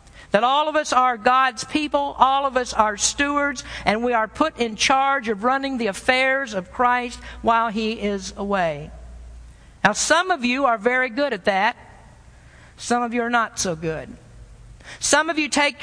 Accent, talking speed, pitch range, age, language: American, 180 wpm, 215-285 Hz, 50-69, English